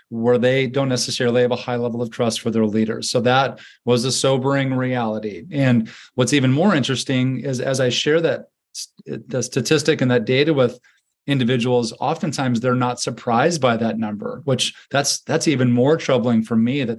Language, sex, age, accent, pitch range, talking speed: English, male, 40-59, American, 120-135 Hz, 185 wpm